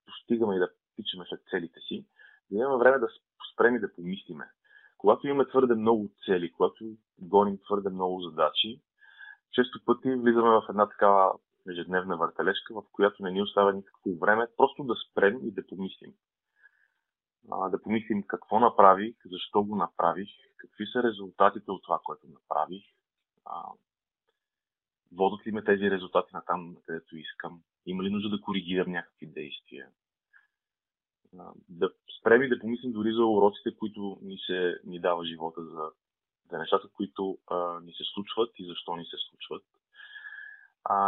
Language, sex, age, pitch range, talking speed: Bulgarian, male, 30-49, 90-120 Hz, 150 wpm